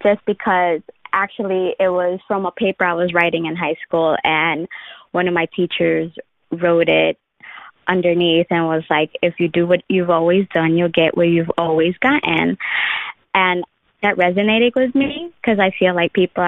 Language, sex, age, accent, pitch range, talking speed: English, female, 20-39, American, 170-190 Hz, 175 wpm